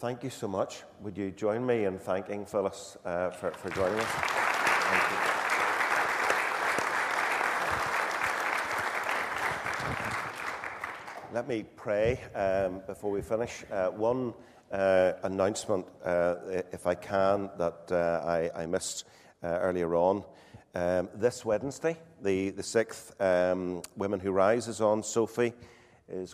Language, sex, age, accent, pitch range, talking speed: English, male, 40-59, British, 90-100 Hz, 125 wpm